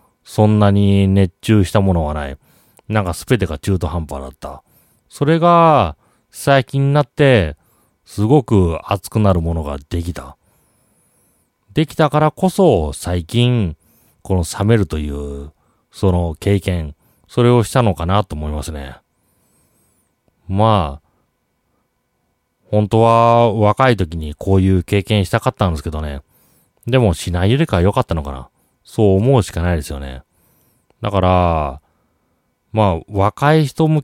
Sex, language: male, Japanese